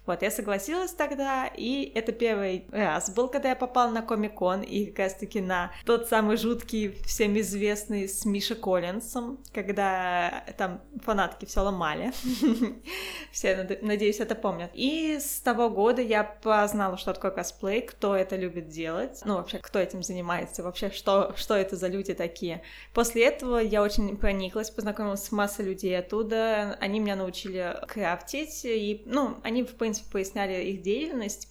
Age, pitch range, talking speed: 20-39, 195-235 Hz, 150 wpm